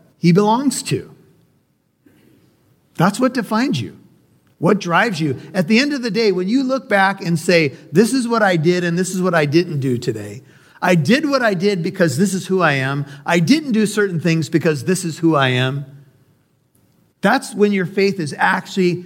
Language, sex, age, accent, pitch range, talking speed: English, male, 50-69, American, 140-185 Hz, 200 wpm